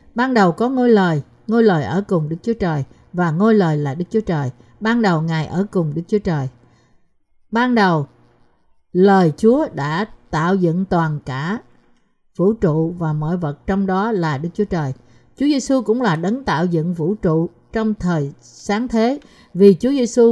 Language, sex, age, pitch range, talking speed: Vietnamese, female, 60-79, 160-225 Hz, 185 wpm